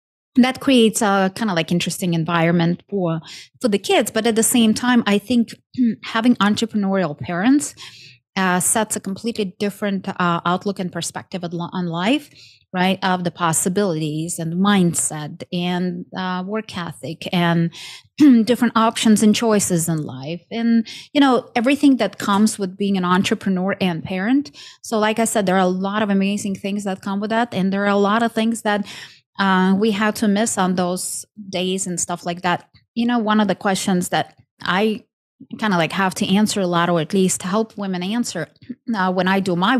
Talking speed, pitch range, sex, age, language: 190 wpm, 180-220 Hz, female, 30-49, English